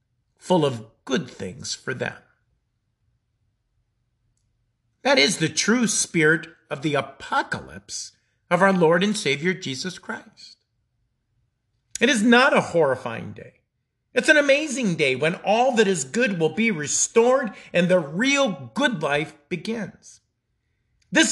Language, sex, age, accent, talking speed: English, male, 50-69, American, 130 wpm